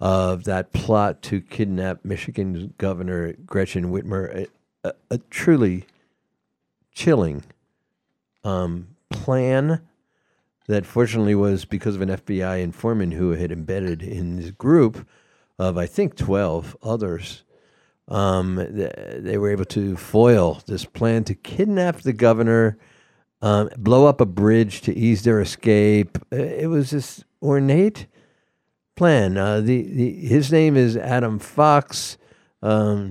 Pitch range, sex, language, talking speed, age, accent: 95-120 Hz, male, English, 130 wpm, 60-79, American